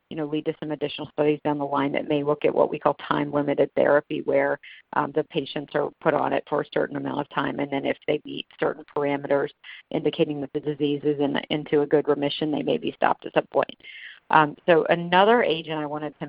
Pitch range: 145-160 Hz